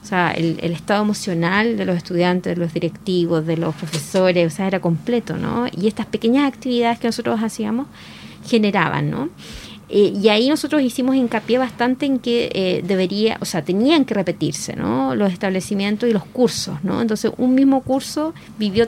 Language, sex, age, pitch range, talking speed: Spanish, female, 20-39, 195-245 Hz, 180 wpm